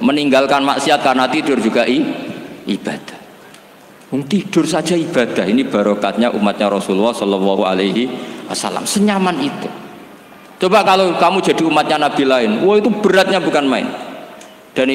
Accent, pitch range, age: native, 110-140 Hz, 50-69